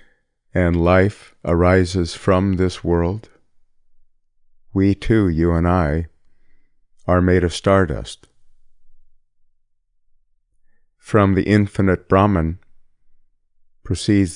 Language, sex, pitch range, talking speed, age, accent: English, male, 80-100 Hz, 85 wpm, 50-69, American